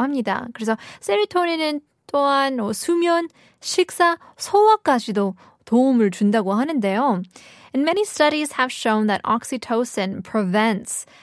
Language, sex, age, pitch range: Korean, female, 20-39, 205-280 Hz